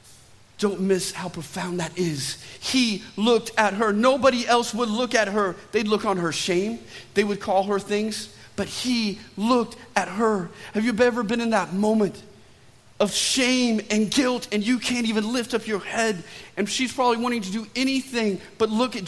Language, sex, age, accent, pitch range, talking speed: English, male, 40-59, American, 160-220 Hz, 190 wpm